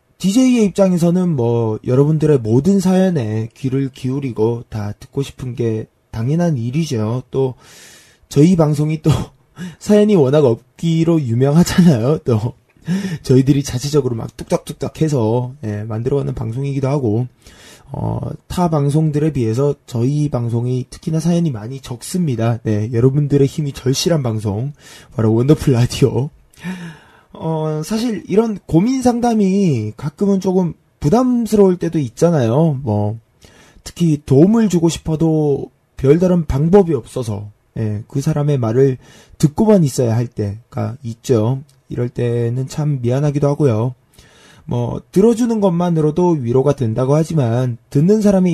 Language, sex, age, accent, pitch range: Korean, male, 20-39, native, 120-165 Hz